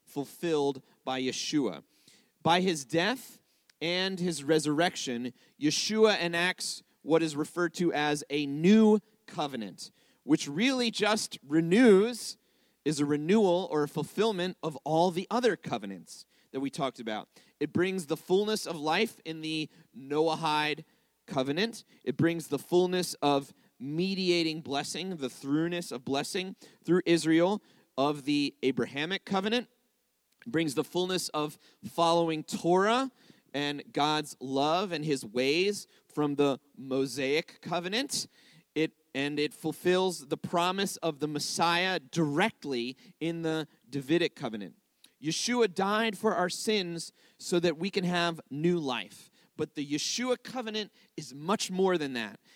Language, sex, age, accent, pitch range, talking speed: English, male, 30-49, American, 150-200 Hz, 130 wpm